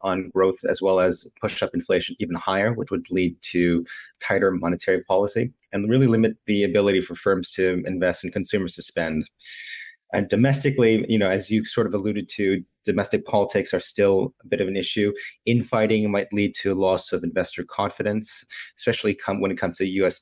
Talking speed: 195 wpm